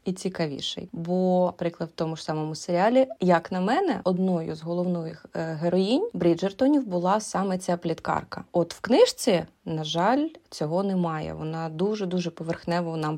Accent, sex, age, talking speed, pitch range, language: native, female, 20-39, 145 wpm, 165-190 Hz, Ukrainian